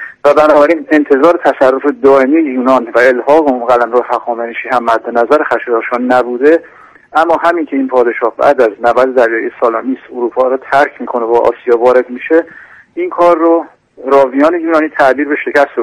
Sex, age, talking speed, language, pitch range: male, 50-69, 155 wpm, Persian, 125-155 Hz